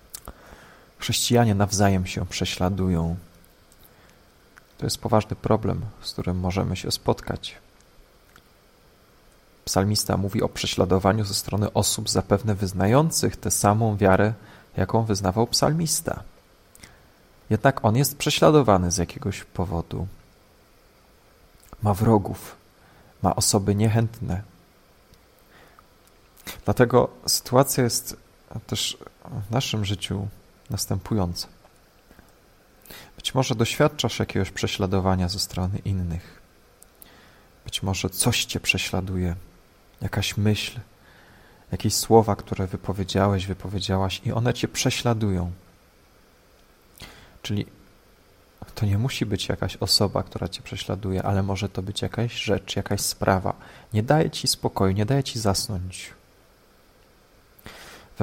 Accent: native